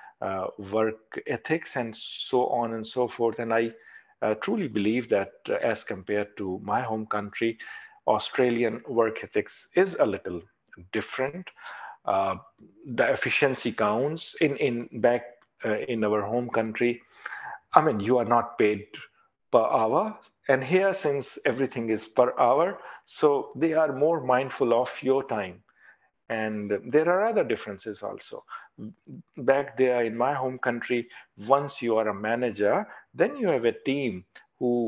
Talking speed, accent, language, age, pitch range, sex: 150 wpm, Indian, English, 50-69, 110-135 Hz, male